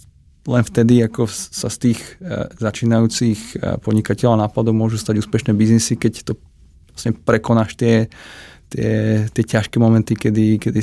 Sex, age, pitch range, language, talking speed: male, 20-39, 105-115 Hz, Czech, 115 wpm